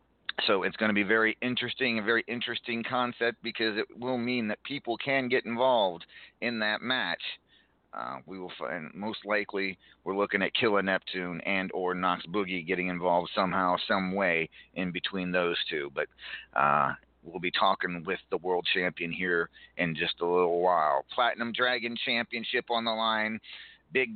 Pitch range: 95-115 Hz